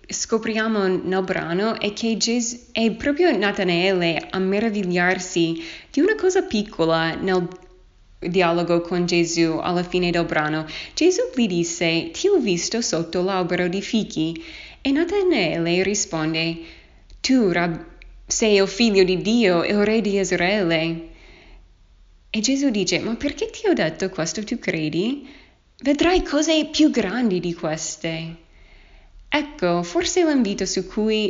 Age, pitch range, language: 20-39, 170-225 Hz, Italian